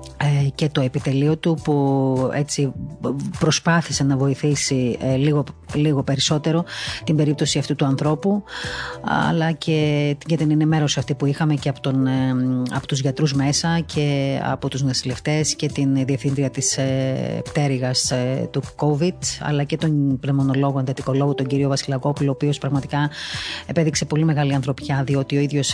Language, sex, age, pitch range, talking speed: Greek, female, 30-49, 135-150 Hz, 140 wpm